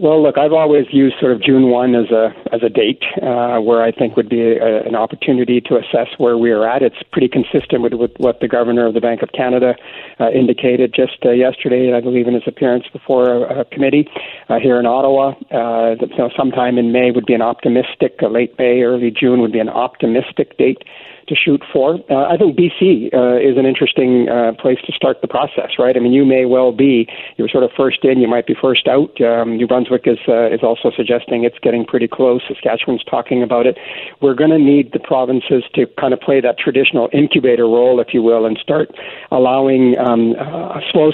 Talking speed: 225 wpm